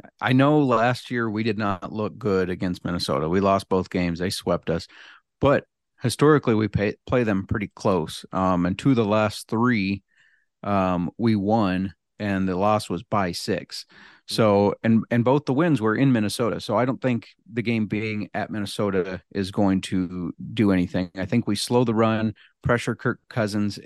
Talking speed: 185 wpm